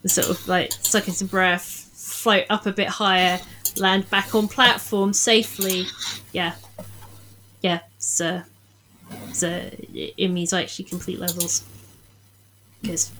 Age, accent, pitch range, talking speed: 30-49, British, 165-220 Hz, 125 wpm